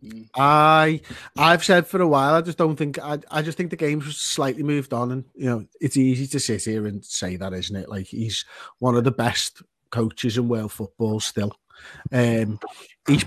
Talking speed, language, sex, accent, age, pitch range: 205 wpm, English, male, British, 30-49, 130-155 Hz